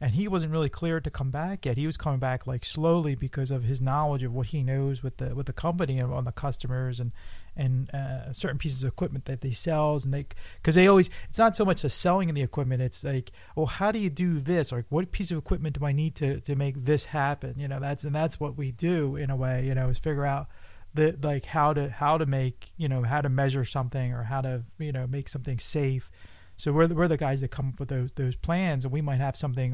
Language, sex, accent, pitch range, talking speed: English, male, American, 130-155 Hz, 270 wpm